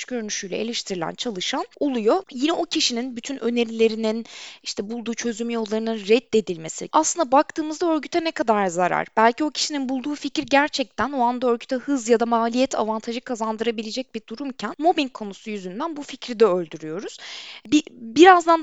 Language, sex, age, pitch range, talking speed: Turkish, female, 20-39, 210-280 Hz, 150 wpm